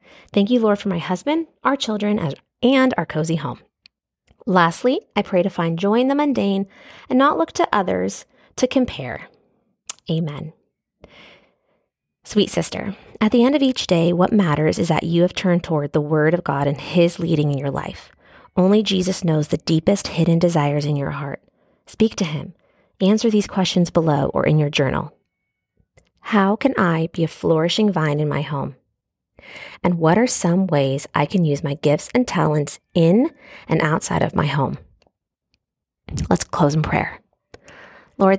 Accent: American